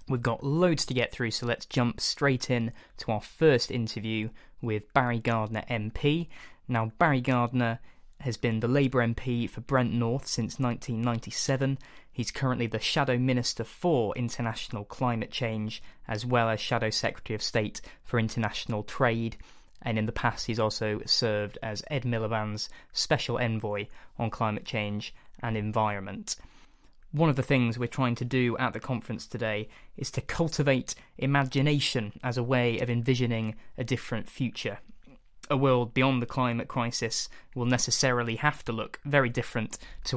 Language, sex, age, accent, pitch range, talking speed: English, male, 20-39, British, 115-130 Hz, 160 wpm